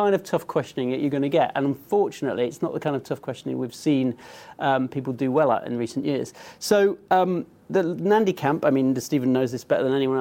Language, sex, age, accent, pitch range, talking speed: English, male, 40-59, British, 135-175 Hz, 230 wpm